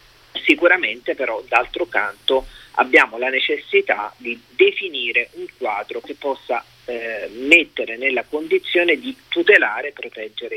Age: 40-59